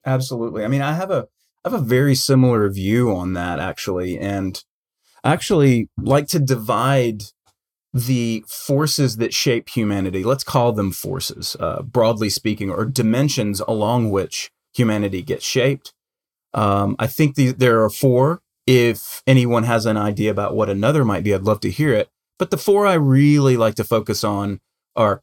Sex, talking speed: male, 170 wpm